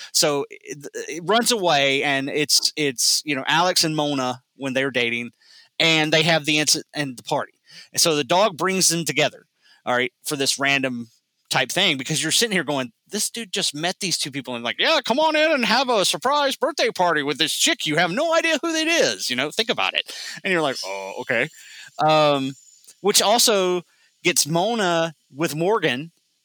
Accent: American